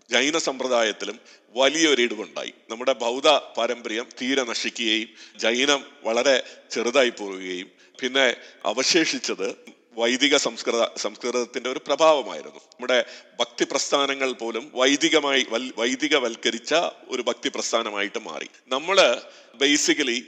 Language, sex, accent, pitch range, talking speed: Malayalam, male, native, 130-160 Hz, 90 wpm